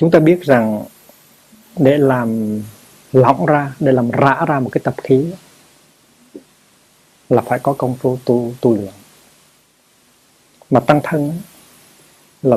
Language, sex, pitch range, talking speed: Vietnamese, male, 115-145 Hz, 135 wpm